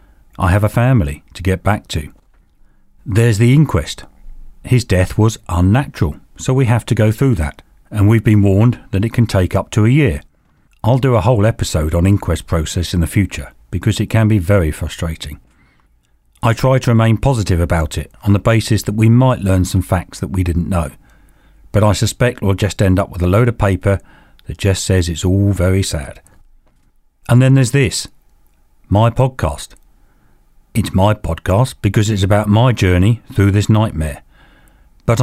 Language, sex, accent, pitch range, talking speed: English, male, British, 90-115 Hz, 185 wpm